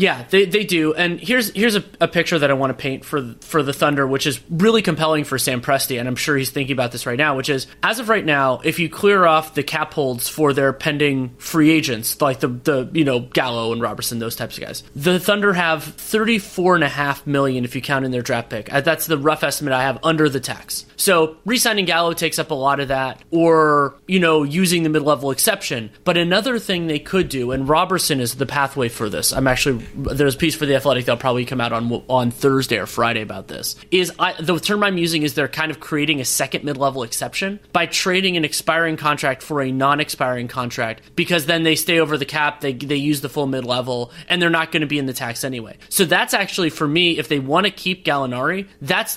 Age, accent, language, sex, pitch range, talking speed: 30-49, American, English, male, 135-175 Hz, 240 wpm